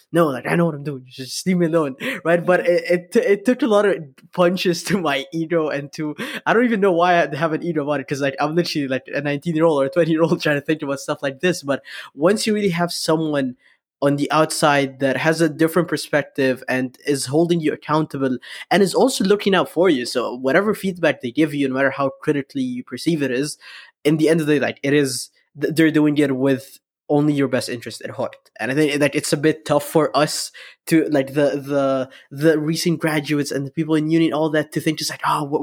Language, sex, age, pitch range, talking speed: English, male, 20-39, 145-175 Hz, 250 wpm